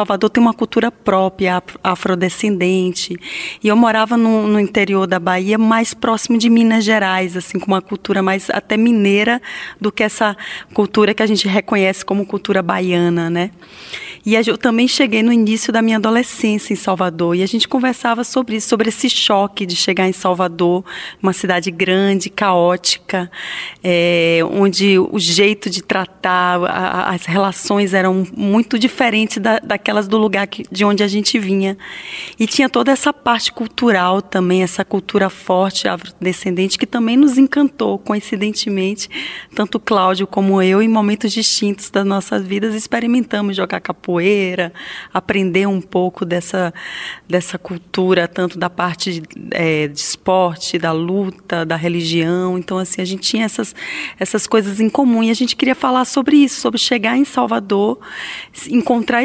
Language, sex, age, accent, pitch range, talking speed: Portuguese, female, 20-39, Brazilian, 185-225 Hz, 160 wpm